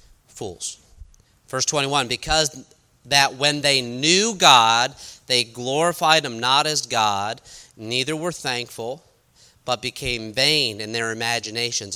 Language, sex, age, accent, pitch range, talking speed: English, male, 40-59, American, 120-175 Hz, 120 wpm